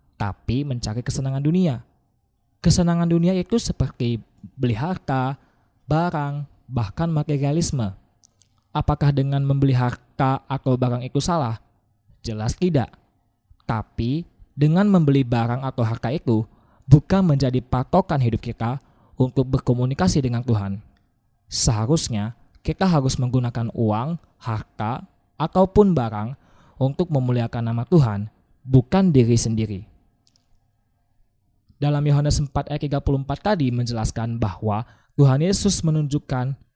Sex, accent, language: male, native, Indonesian